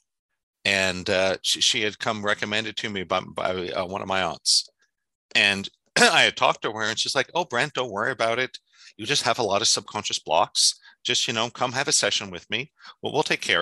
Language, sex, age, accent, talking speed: English, male, 50-69, American, 230 wpm